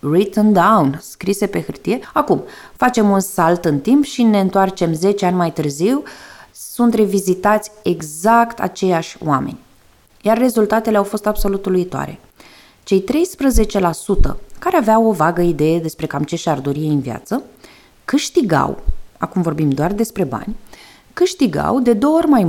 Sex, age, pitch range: female, 20-39, 165-235 Hz